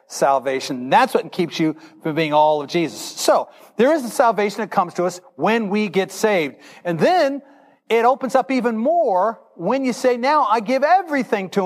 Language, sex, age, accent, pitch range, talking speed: English, male, 50-69, American, 170-250 Hz, 195 wpm